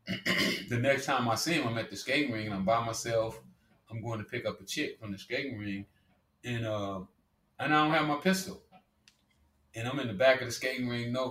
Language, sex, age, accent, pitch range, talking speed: English, male, 30-49, American, 95-110 Hz, 235 wpm